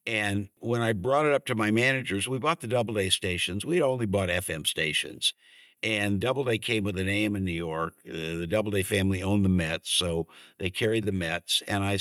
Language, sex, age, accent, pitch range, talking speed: English, male, 60-79, American, 95-115 Hz, 210 wpm